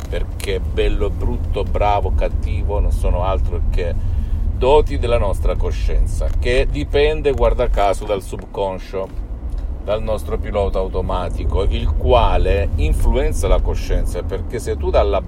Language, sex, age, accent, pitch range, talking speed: Italian, male, 50-69, native, 80-95 Hz, 125 wpm